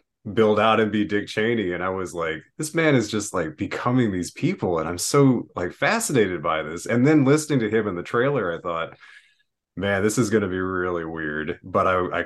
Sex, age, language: male, 30-49, English